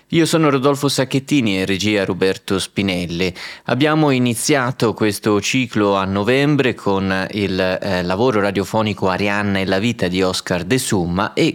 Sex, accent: male, native